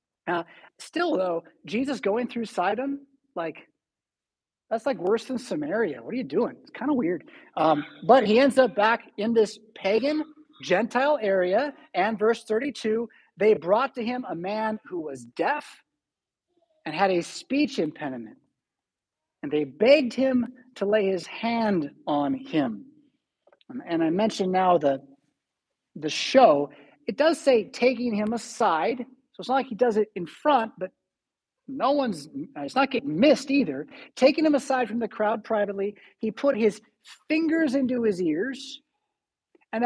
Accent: American